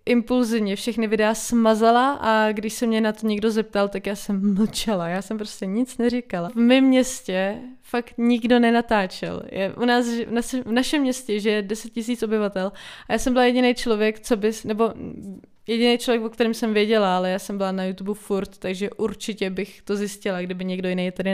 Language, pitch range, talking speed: Czech, 200-235 Hz, 190 wpm